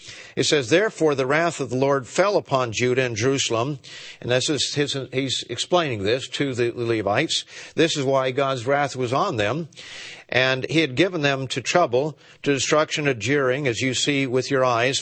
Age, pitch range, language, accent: 50-69, 130-165 Hz, English, American